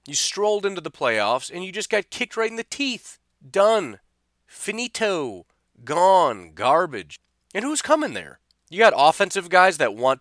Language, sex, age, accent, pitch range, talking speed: English, male, 30-49, American, 105-165 Hz, 165 wpm